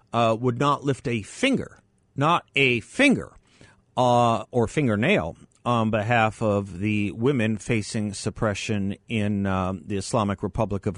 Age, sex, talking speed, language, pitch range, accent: 50-69, male, 135 wpm, English, 100-120 Hz, American